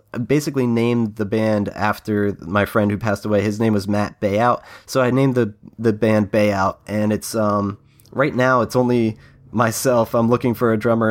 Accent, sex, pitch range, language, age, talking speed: American, male, 100-115 Hz, English, 20-39, 190 wpm